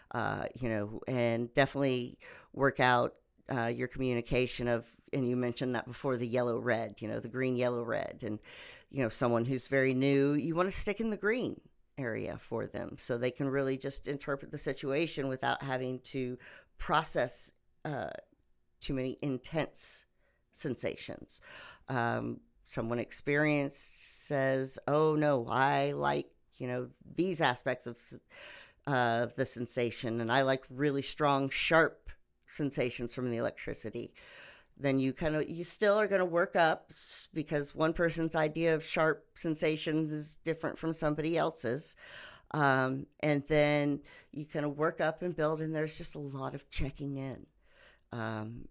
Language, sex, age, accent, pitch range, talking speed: English, female, 40-59, American, 125-155 Hz, 155 wpm